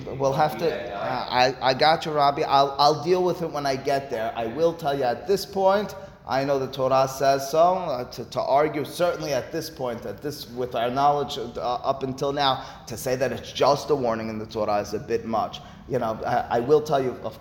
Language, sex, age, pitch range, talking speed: English, male, 30-49, 115-145 Hz, 240 wpm